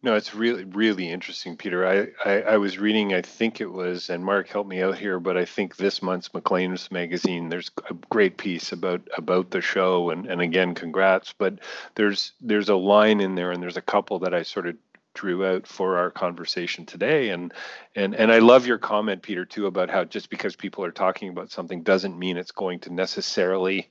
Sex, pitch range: male, 90-110 Hz